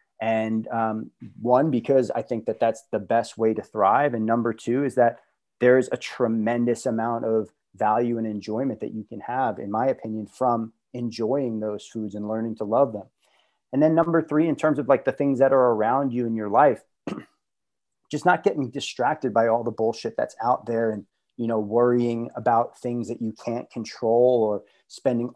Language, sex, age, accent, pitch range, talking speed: English, male, 30-49, American, 115-125 Hz, 195 wpm